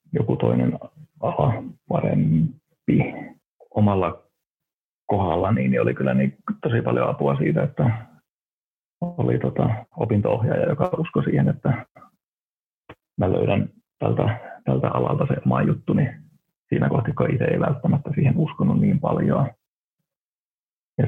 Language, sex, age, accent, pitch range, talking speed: Finnish, male, 30-49, native, 95-155 Hz, 120 wpm